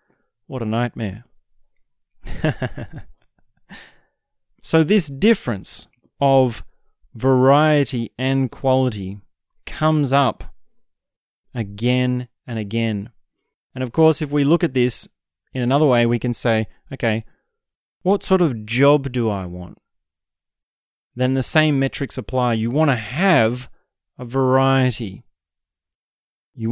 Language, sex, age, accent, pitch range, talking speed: English, male, 30-49, Australian, 115-145 Hz, 110 wpm